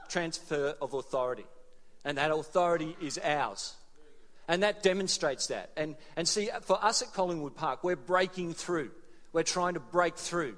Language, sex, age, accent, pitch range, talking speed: English, male, 40-59, Australian, 150-180 Hz, 160 wpm